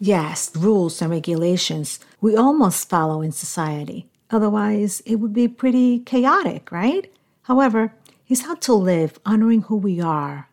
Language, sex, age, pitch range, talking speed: English, female, 50-69, 160-220 Hz, 140 wpm